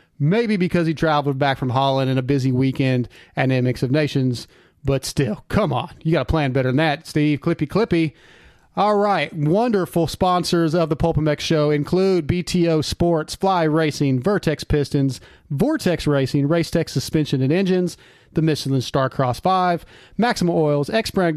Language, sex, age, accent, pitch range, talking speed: English, male, 40-59, American, 145-170 Hz, 170 wpm